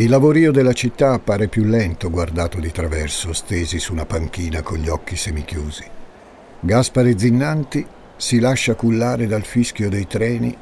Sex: male